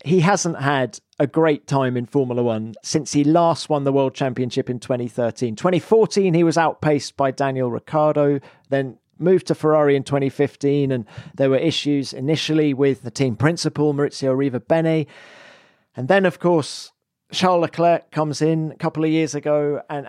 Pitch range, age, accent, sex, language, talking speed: 135-165 Hz, 40-59, British, male, English, 165 wpm